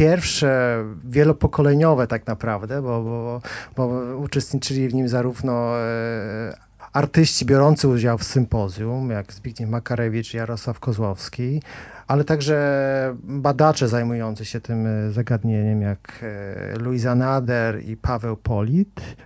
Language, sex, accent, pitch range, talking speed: Polish, male, native, 115-145 Hz, 105 wpm